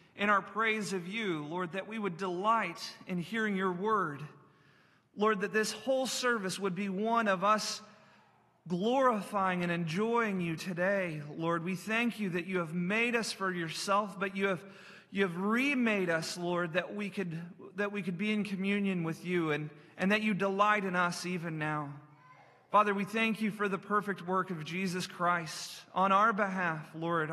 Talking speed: 180 wpm